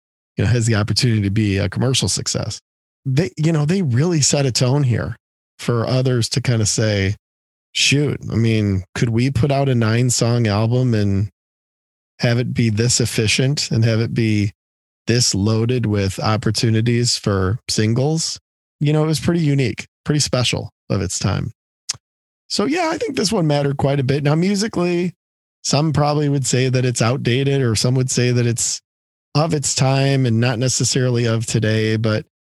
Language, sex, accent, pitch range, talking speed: English, male, American, 100-130 Hz, 180 wpm